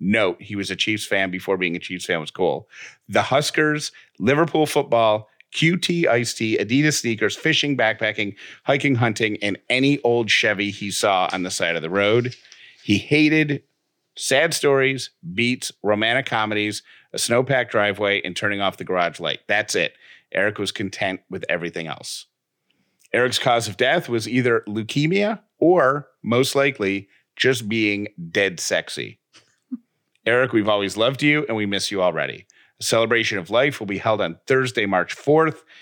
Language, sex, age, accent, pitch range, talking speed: English, male, 40-59, American, 100-140 Hz, 165 wpm